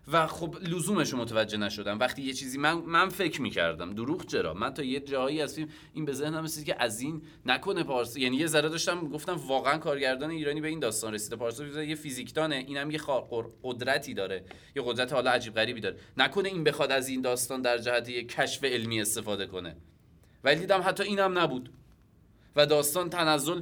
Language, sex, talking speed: Persian, male, 190 wpm